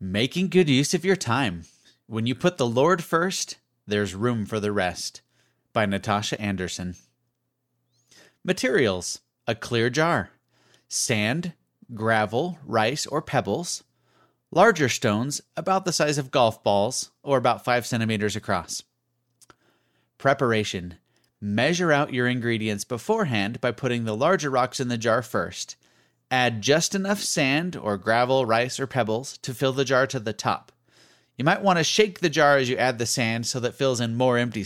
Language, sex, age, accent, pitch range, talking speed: English, male, 30-49, American, 110-145 Hz, 160 wpm